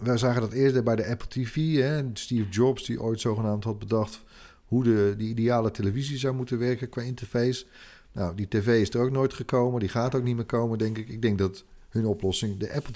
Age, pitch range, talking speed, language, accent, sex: 40-59, 105-125 Hz, 225 wpm, Dutch, Dutch, male